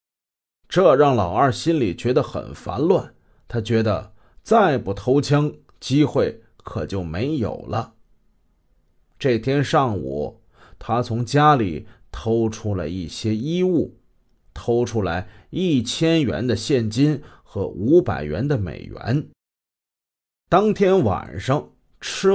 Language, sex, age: Chinese, male, 30-49